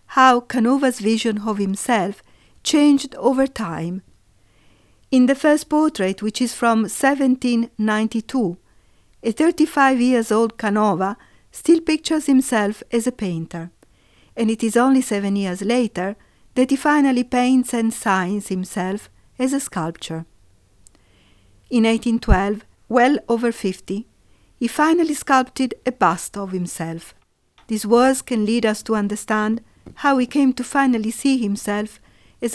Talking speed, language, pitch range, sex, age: 125 wpm, Italian, 195-260 Hz, female, 50-69